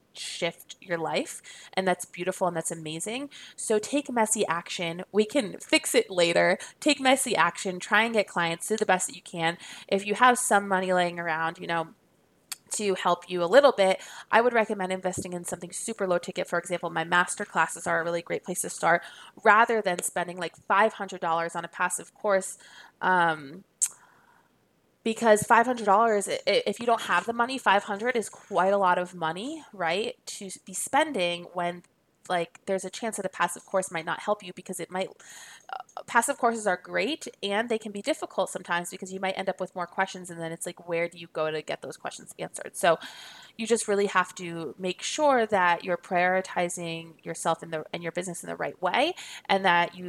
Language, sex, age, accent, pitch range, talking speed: English, female, 20-39, American, 170-215 Hz, 200 wpm